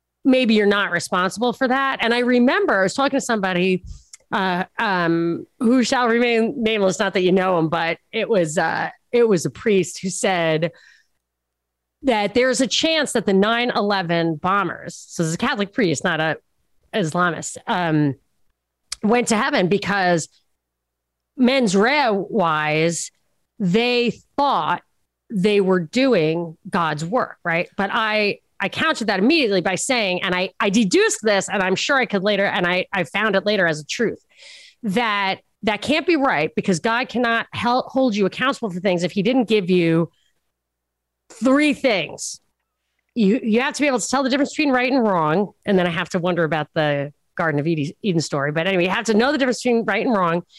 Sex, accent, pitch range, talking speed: female, American, 175-240 Hz, 185 wpm